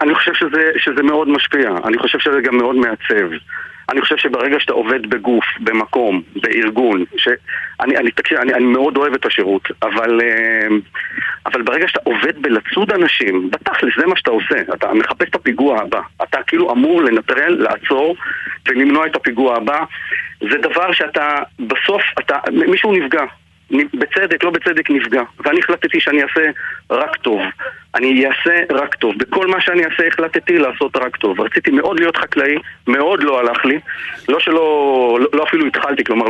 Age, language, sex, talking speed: 40-59, Hebrew, male, 165 wpm